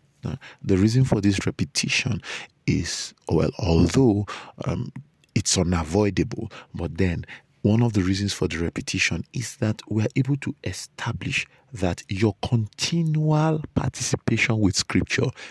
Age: 50-69